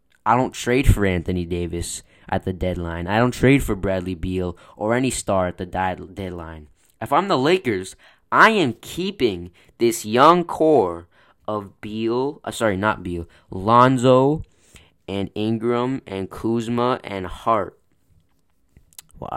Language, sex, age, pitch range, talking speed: English, male, 20-39, 90-120 Hz, 145 wpm